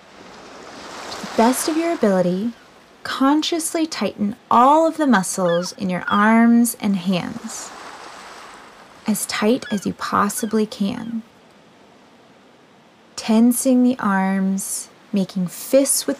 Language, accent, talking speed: English, American, 100 wpm